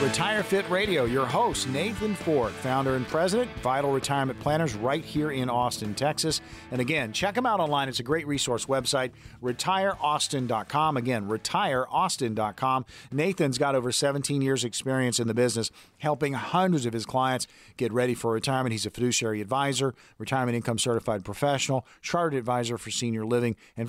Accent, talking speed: American, 160 wpm